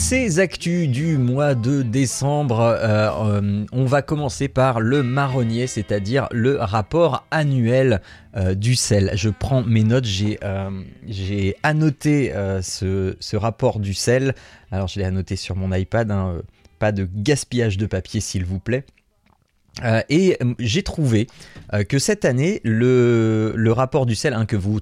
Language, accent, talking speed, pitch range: French, French, 155 wpm, 95-130 Hz